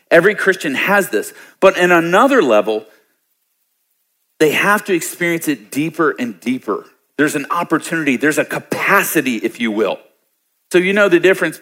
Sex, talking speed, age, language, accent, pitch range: male, 155 wpm, 40-59, English, American, 115-155 Hz